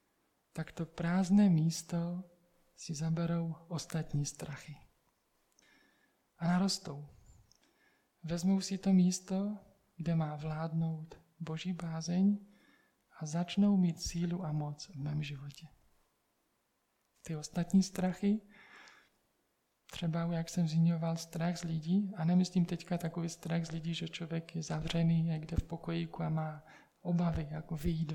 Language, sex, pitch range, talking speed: Czech, male, 160-180 Hz, 125 wpm